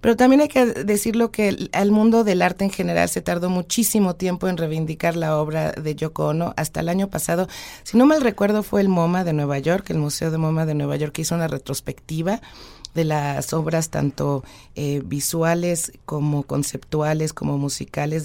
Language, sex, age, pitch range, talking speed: Spanish, female, 40-59, 155-200 Hz, 190 wpm